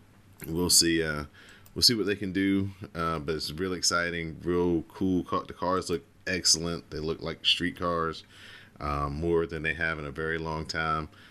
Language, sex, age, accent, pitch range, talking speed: English, male, 30-49, American, 75-100 Hz, 185 wpm